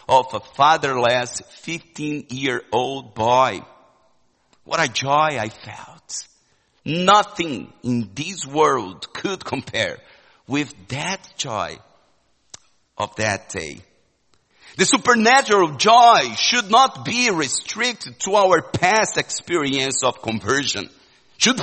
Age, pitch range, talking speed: 50-69, 120-165 Hz, 100 wpm